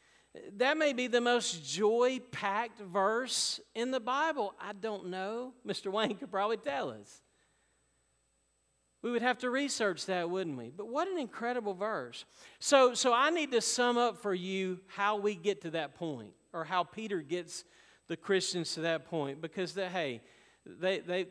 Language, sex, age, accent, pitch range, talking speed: English, male, 40-59, American, 150-210 Hz, 170 wpm